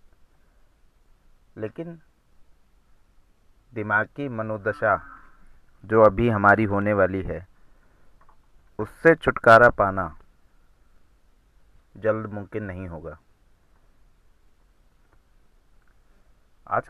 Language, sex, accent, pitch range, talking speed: Hindi, male, native, 85-120 Hz, 65 wpm